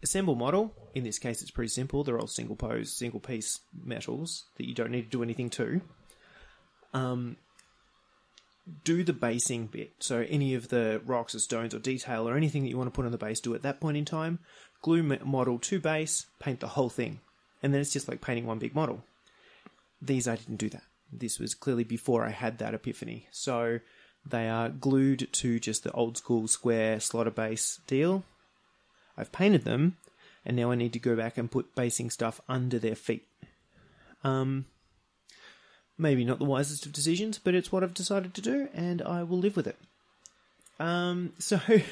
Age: 20-39